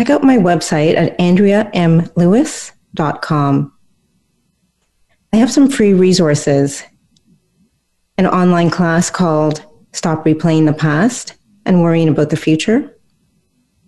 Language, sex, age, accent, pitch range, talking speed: English, female, 40-59, American, 160-205 Hz, 105 wpm